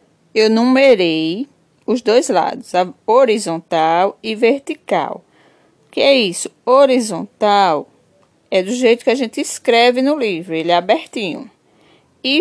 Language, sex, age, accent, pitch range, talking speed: Portuguese, female, 20-39, Brazilian, 200-260 Hz, 125 wpm